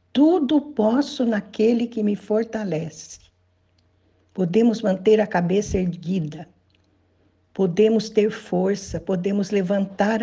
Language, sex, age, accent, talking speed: Portuguese, female, 60-79, Brazilian, 95 wpm